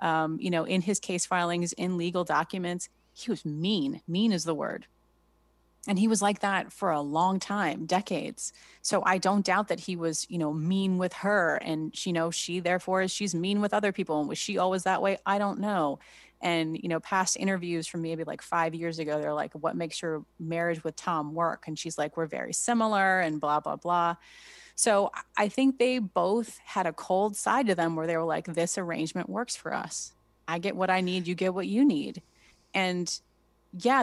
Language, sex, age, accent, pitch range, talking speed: English, female, 30-49, American, 165-195 Hz, 215 wpm